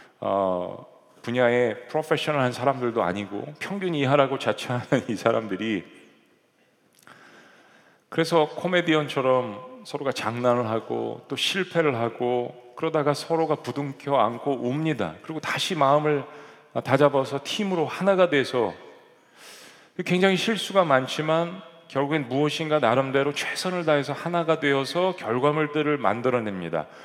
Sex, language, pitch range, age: male, Korean, 125-160 Hz, 40-59